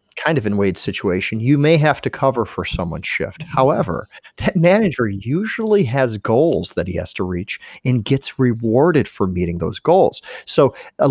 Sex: male